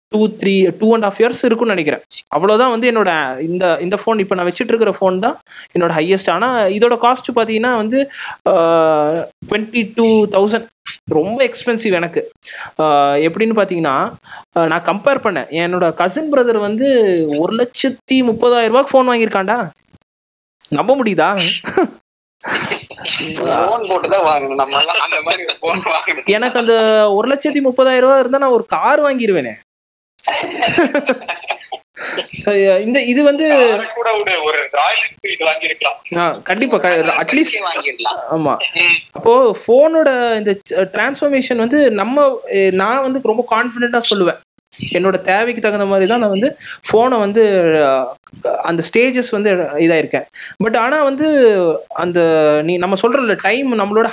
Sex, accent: male, native